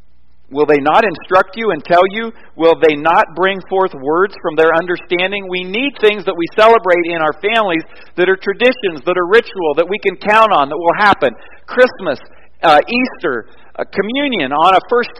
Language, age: English, 50-69